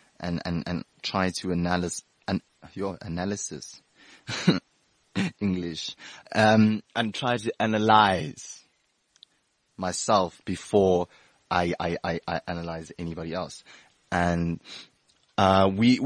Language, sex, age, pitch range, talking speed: English, male, 20-39, 90-115 Hz, 100 wpm